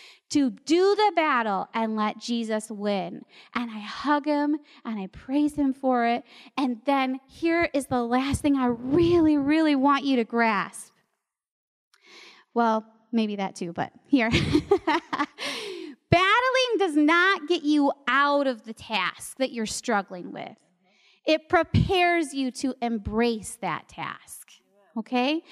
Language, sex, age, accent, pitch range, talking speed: English, female, 30-49, American, 255-360 Hz, 140 wpm